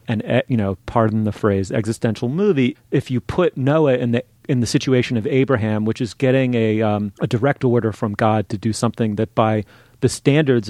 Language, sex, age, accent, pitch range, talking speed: English, male, 30-49, American, 110-130 Hz, 200 wpm